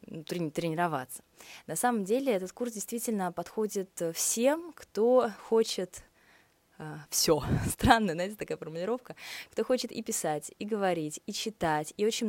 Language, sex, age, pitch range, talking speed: Russian, female, 20-39, 155-200 Hz, 130 wpm